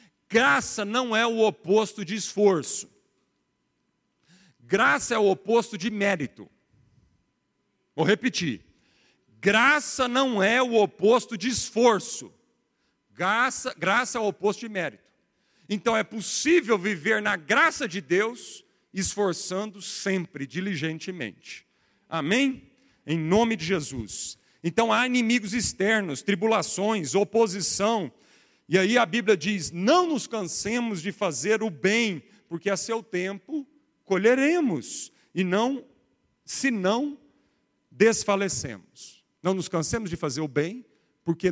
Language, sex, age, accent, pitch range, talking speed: Portuguese, male, 50-69, Brazilian, 160-220 Hz, 115 wpm